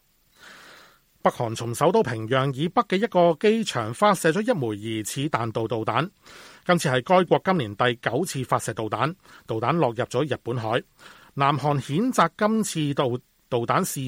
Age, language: 30-49, Chinese